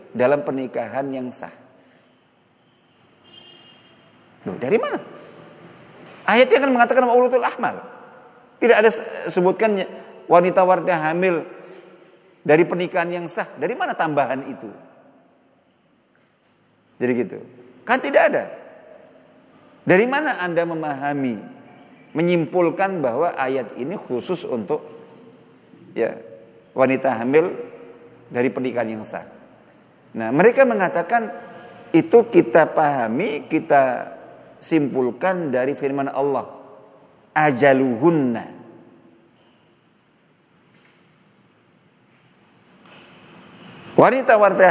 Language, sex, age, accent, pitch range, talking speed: Indonesian, male, 50-69, native, 140-200 Hz, 80 wpm